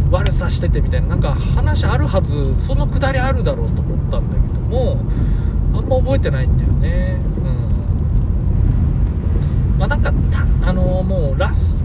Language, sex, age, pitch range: Japanese, male, 20-39, 80-130 Hz